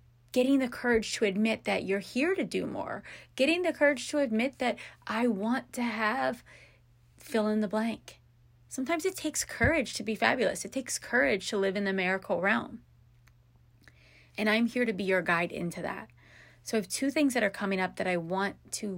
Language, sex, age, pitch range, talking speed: English, female, 30-49, 175-225 Hz, 200 wpm